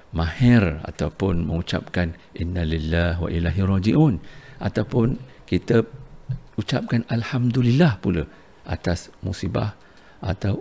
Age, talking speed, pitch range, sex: 50-69, 90 wpm, 85-115 Hz, male